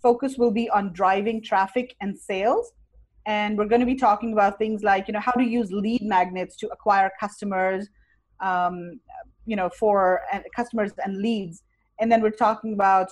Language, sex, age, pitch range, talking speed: English, female, 30-49, 195-235 Hz, 180 wpm